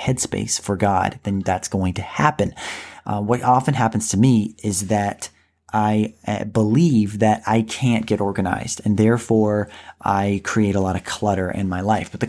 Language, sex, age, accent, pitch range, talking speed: English, male, 30-49, American, 100-120 Hz, 175 wpm